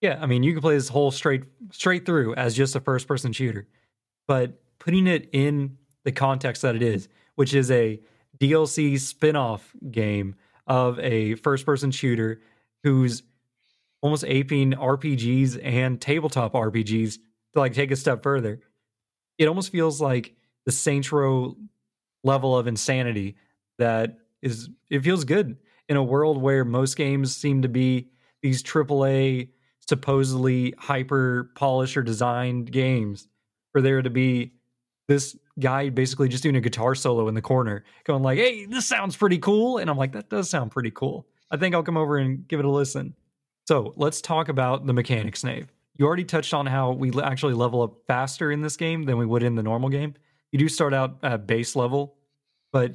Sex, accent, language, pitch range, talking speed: male, American, English, 120-145 Hz, 175 wpm